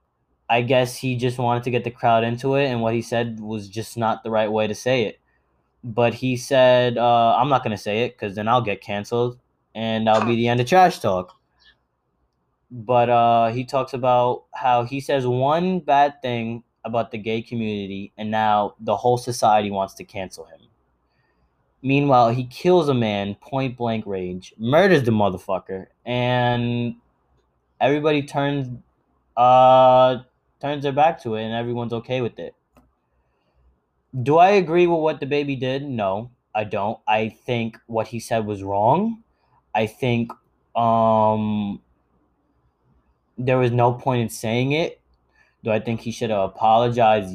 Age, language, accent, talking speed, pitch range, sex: 20-39, English, American, 165 wpm, 105-125 Hz, male